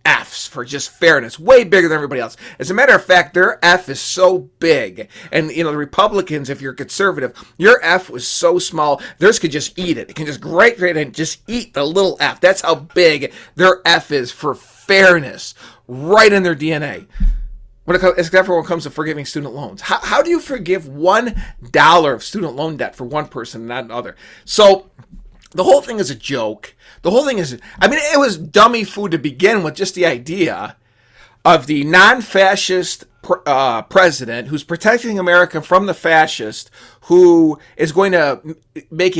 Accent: American